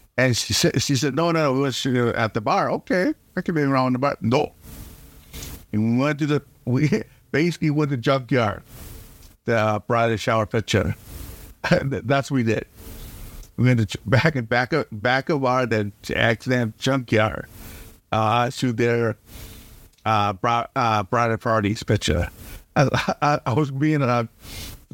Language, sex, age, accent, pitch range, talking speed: English, male, 50-69, American, 110-140 Hz, 175 wpm